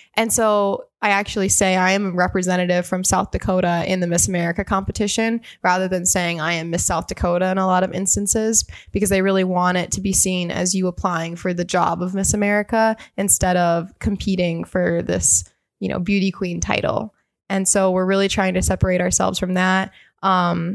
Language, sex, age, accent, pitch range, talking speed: English, female, 20-39, American, 180-200 Hz, 195 wpm